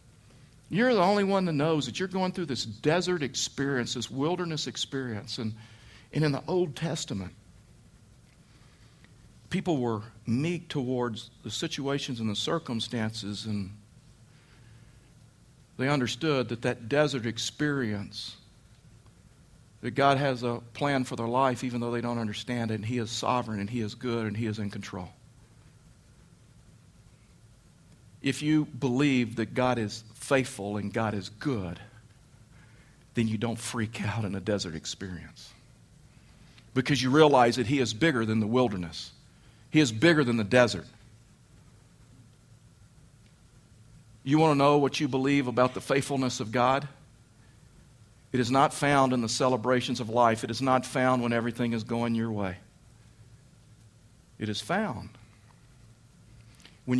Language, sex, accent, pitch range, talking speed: English, male, American, 110-140 Hz, 145 wpm